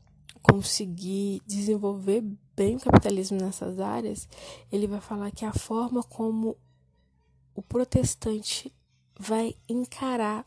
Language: Portuguese